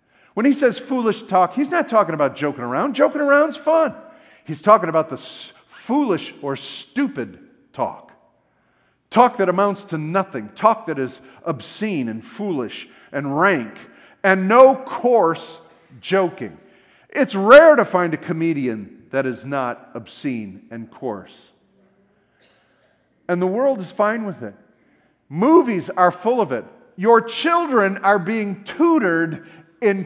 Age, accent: 50-69, American